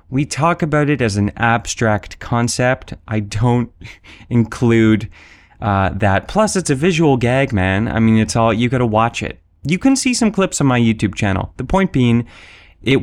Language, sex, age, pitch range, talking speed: English, male, 30-49, 100-135 Hz, 185 wpm